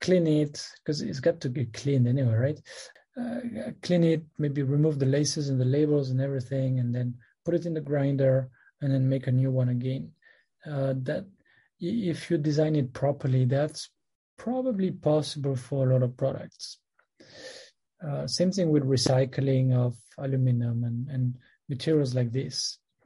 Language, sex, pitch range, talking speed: English, male, 135-160 Hz, 165 wpm